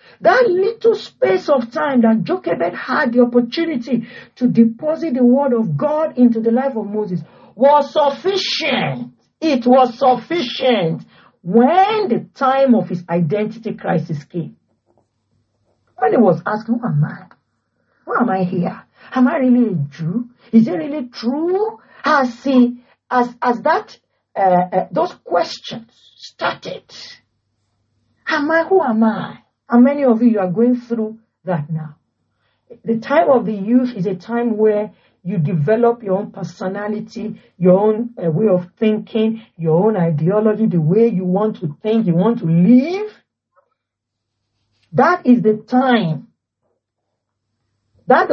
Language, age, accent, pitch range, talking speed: English, 50-69, Nigerian, 175-255 Hz, 140 wpm